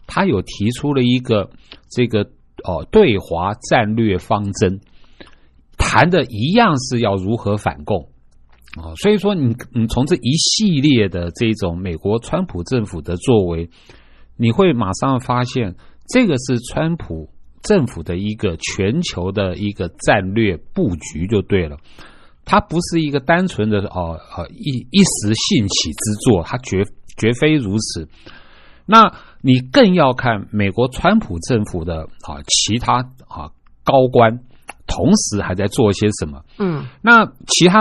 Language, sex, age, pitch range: Chinese, male, 50-69, 95-145 Hz